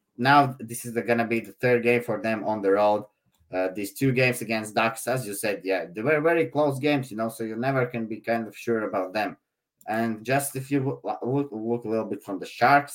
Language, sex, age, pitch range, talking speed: English, male, 30-49, 105-130 Hz, 245 wpm